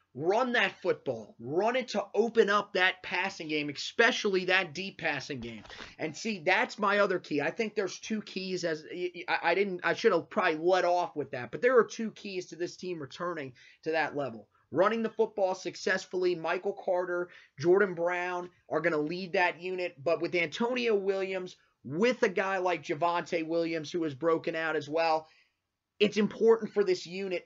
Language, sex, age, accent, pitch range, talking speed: English, male, 30-49, American, 160-195 Hz, 185 wpm